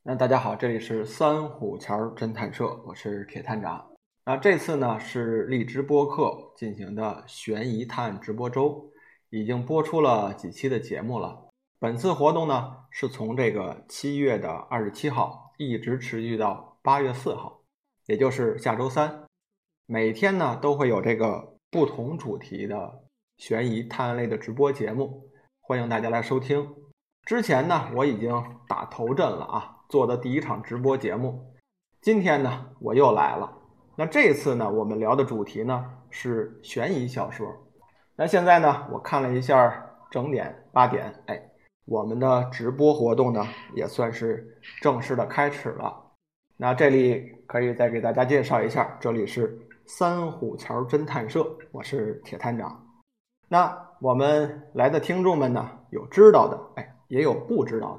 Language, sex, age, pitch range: Chinese, male, 20-39, 115-150 Hz